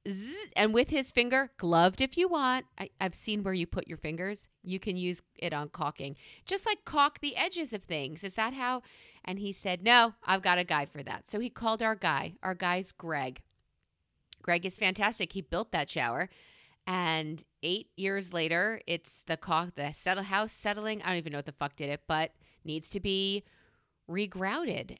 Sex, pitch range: female, 165-250 Hz